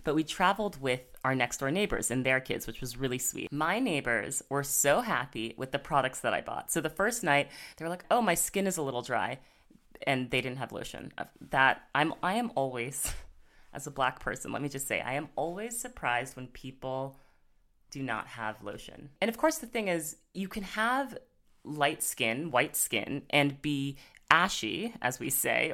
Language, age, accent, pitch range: English, 30-49, American, 135-170 Hz